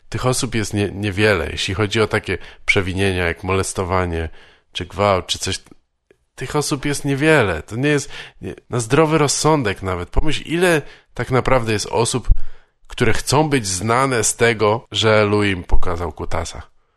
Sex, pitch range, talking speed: male, 95-130 Hz, 155 wpm